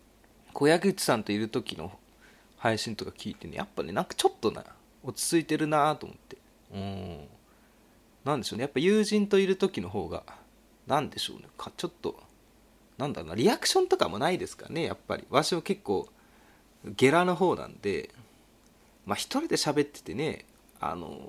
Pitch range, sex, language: 105-165 Hz, male, Japanese